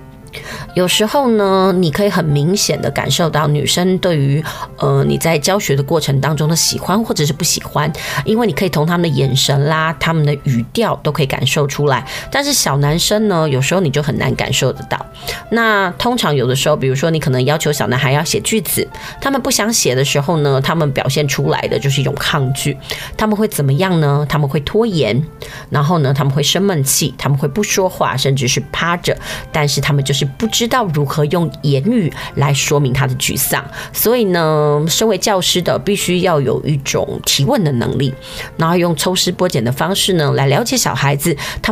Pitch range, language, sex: 140-185 Hz, Chinese, female